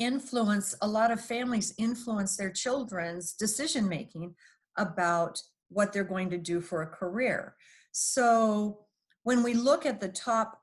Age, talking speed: 50-69, 140 wpm